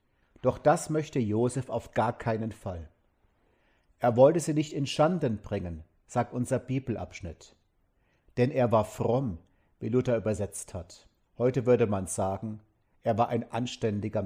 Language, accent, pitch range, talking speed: German, German, 105-130 Hz, 145 wpm